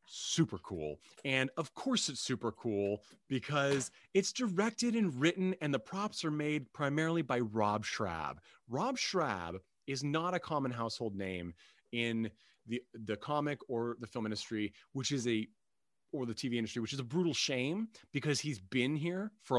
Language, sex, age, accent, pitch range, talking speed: English, male, 30-49, American, 105-145 Hz, 170 wpm